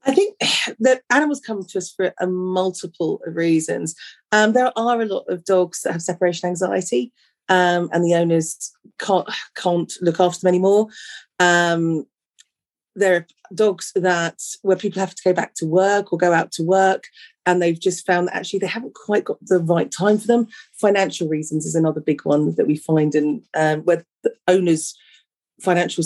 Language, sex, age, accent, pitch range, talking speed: English, female, 30-49, British, 170-210 Hz, 185 wpm